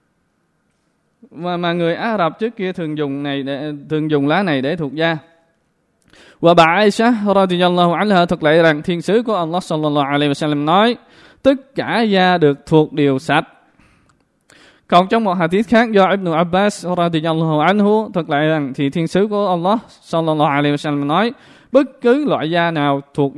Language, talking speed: Vietnamese, 155 wpm